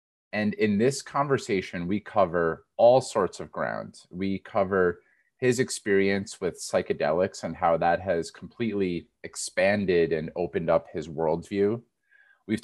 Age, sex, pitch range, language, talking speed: 30-49, male, 90-115 Hz, English, 135 wpm